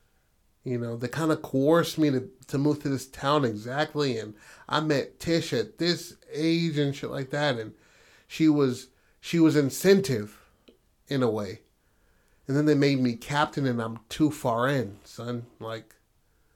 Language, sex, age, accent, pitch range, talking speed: English, male, 30-49, American, 120-155 Hz, 170 wpm